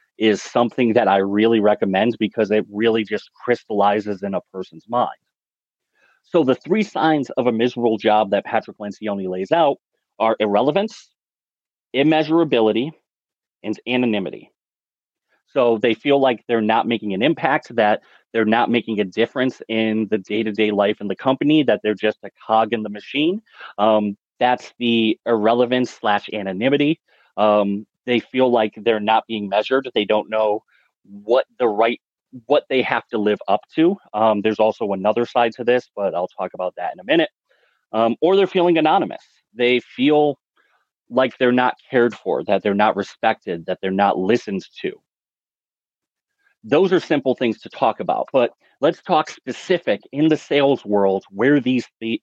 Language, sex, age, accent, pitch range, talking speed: English, male, 30-49, American, 105-130 Hz, 165 wpm